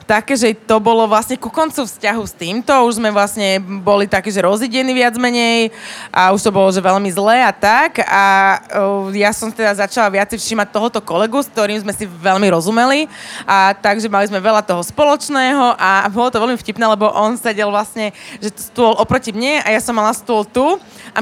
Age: 20-39